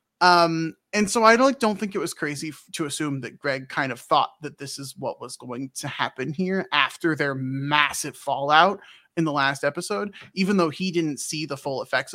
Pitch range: 150-200 Hz